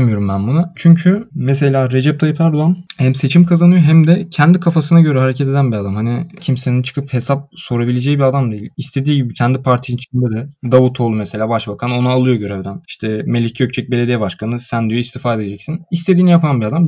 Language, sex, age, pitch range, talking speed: Turkish, male, 20-39, 120-150 Hz, 185 wpm